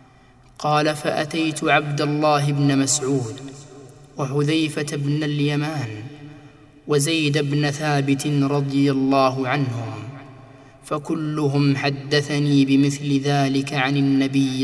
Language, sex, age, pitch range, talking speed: Arabic, male, 20-39, 130-145 Hz, 85 wpm